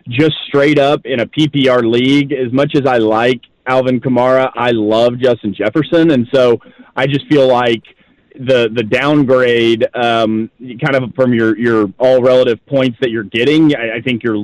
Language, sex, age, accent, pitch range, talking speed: English, male, 30-49, American, 115-135 Hz, 180 wpm